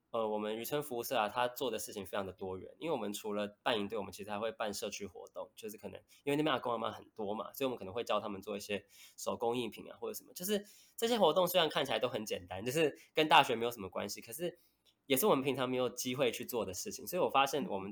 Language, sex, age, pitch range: Chinese, male, 20-39, 105-145 Hz